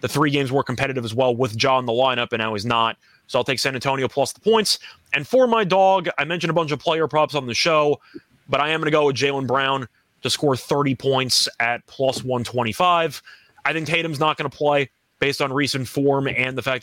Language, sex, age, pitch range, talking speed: English, male, 20-39, 125-155 Hz, 245 wpm